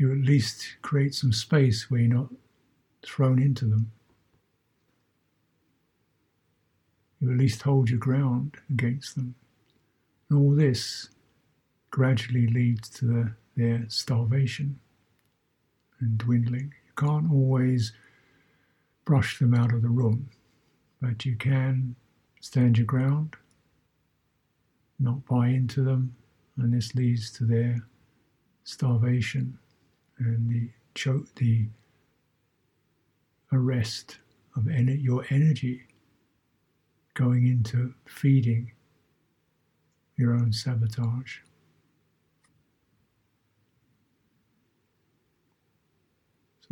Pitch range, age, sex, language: 115-140 Hz, 60-79, male, English